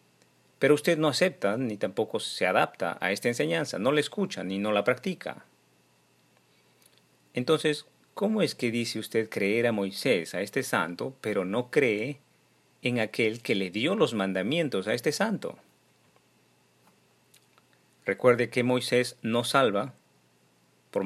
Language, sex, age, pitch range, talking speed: Spanish, male, 40-59, 95-125 Hz, 140 wpm